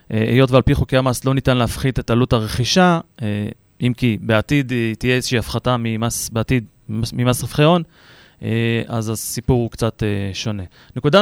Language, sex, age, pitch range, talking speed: Hebrew, male, 30-49, 115-140 Hz, 165 wpm